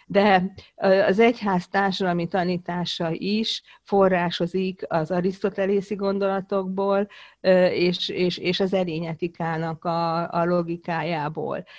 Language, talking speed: Hungarian, 75 wpm